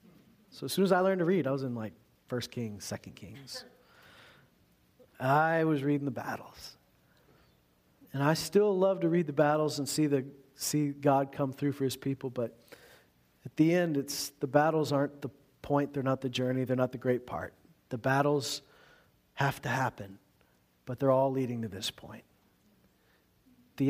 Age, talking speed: 40-59, 180 wpm